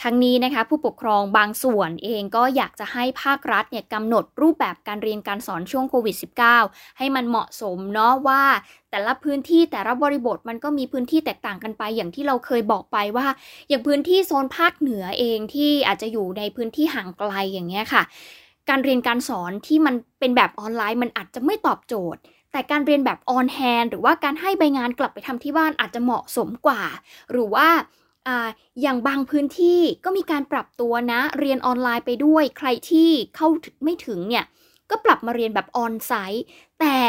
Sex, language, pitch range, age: female, Thai, 220-285 Hz, 20-39